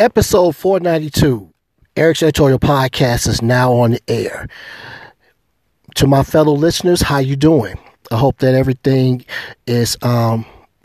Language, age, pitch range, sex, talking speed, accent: English, 50-69, 125-160 Hz, male, 125 wpm, American